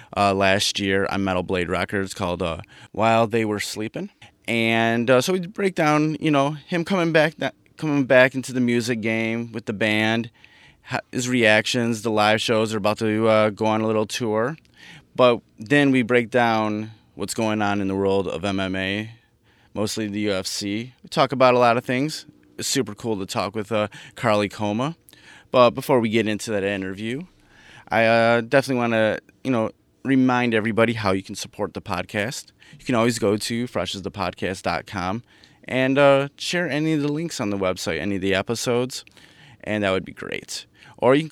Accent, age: American, 30-49